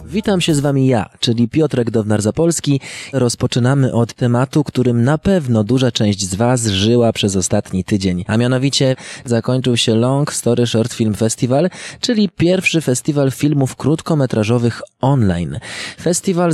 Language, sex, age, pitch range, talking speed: Polish, male, 20-39, 110-140 Hz, 140 wpm